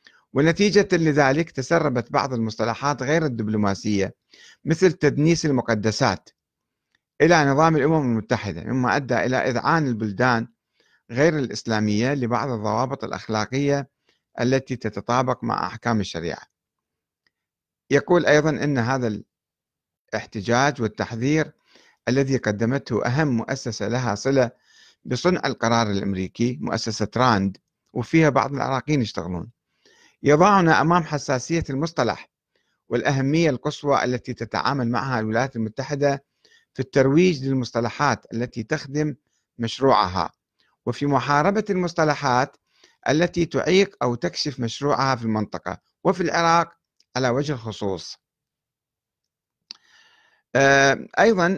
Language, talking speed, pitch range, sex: Arabic, 95 wpm, 115-150 Hz, male